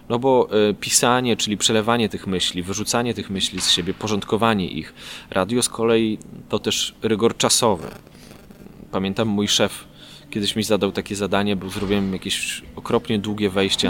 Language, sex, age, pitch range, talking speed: Polish, male, 20-39, 100-135 Hz, 150 wpm